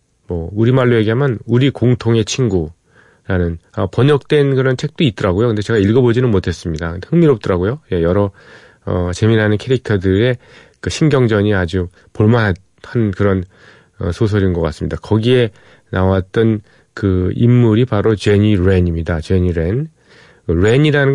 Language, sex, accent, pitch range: Korean, male, native, 90-125 Hz